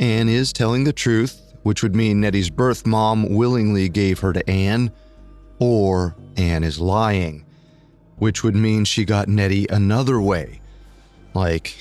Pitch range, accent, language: 95-120 Hz, American, English